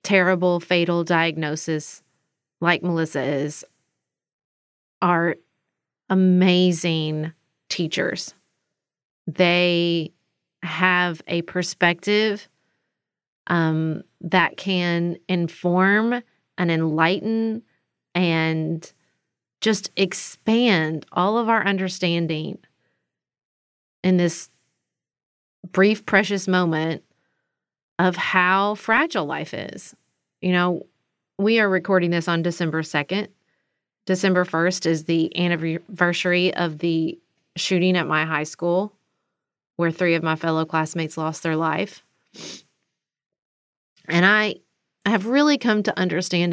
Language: English